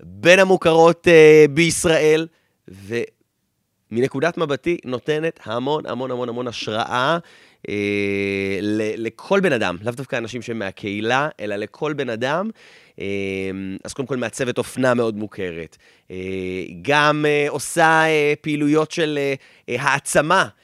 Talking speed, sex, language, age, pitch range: 120 wpm, male, Hebrew, 30-49, 105-150 Hz